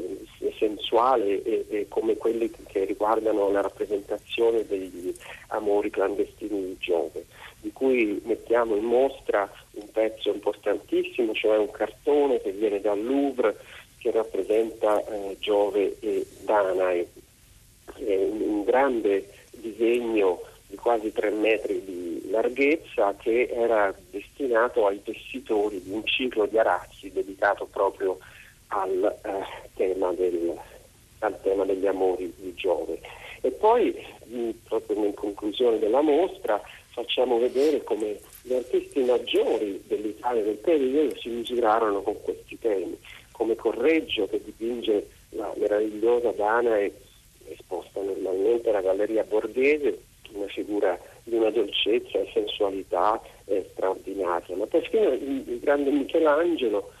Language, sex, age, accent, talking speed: Italian, male, 40-59, native, 125 wpm